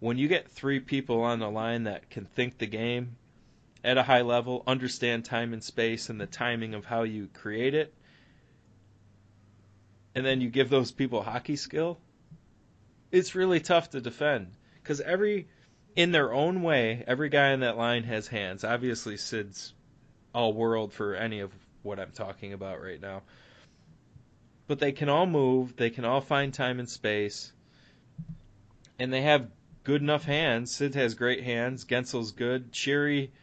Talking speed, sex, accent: 165 wpm, male, American